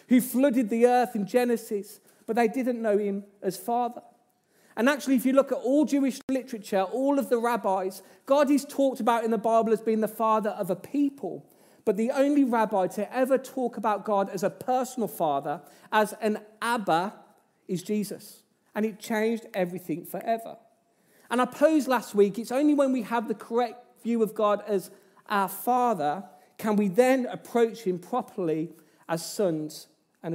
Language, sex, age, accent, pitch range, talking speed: English, male, 40-59, British, 190-245 Hz, 180 wpm